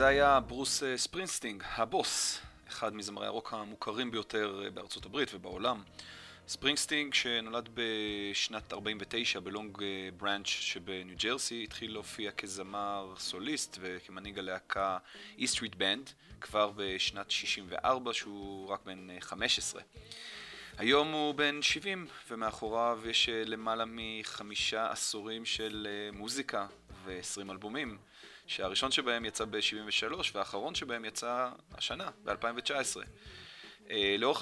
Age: 20-39